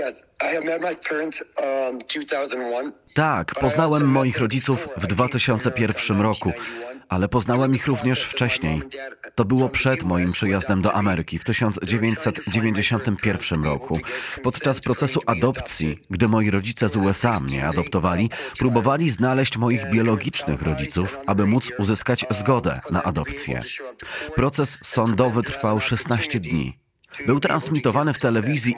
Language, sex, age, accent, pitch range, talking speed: Polish, male, 30-49, native, 105-130 Hz, 110 wpm